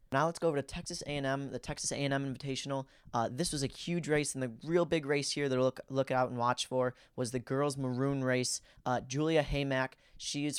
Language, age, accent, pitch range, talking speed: English, 20-39, American, 125-140 Hz, 230 wpm